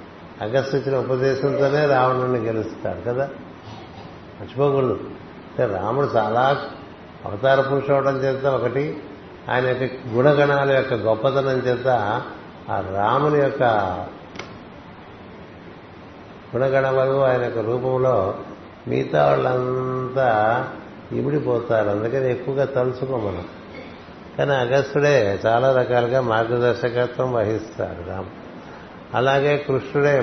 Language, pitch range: Telugu, 115-135 Hz